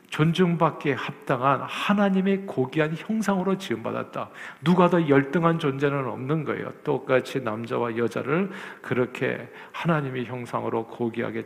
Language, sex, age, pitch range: Korean, male, 50-69, 130-175 Hz